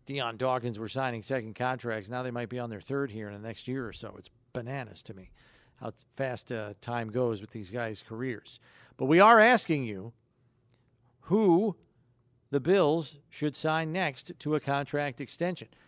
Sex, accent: male, American